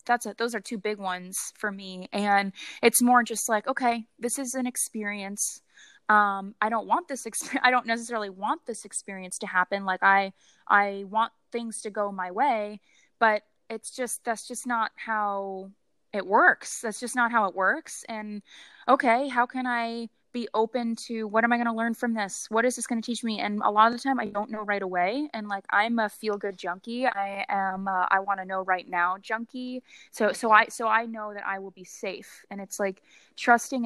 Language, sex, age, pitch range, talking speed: English, female, 20-39, 200-235 Hz, 215 wpm